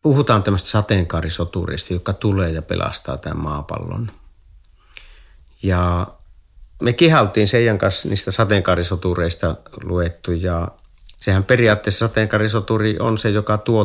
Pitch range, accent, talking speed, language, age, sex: 85-105 Hz, native, 110 wpm, Finnish, 50-69, male